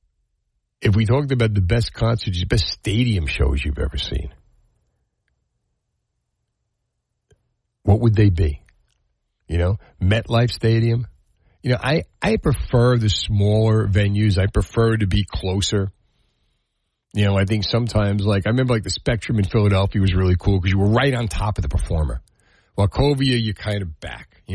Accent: American